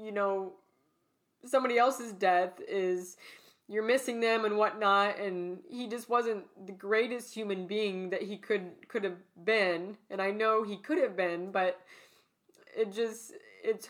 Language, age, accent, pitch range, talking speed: English, 20-39, American, 185-230 Hz, 155 wpm